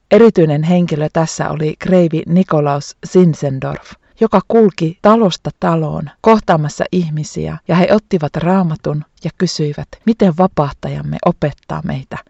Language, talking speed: Finnish, 110 wpm